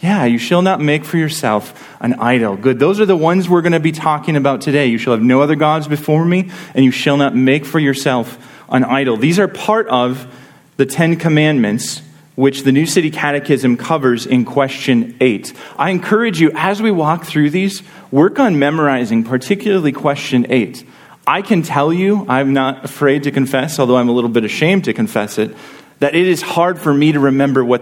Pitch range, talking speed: 120-160 Hz, 205 wpm